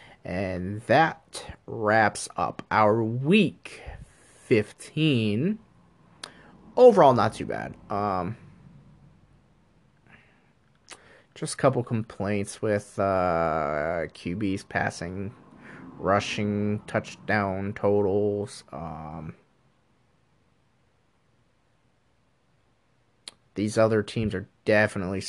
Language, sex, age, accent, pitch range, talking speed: English, male, 30-49, American, 95-110 Hz, 70 wpm